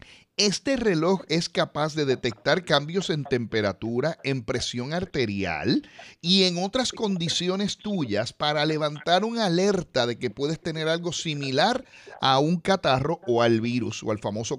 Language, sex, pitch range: Spanish, male, 125-180 Hz